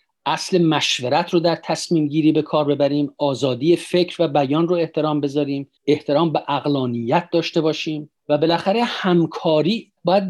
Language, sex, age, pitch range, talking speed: Persian, male, 50-69, 140-175 Hz, 145 wpm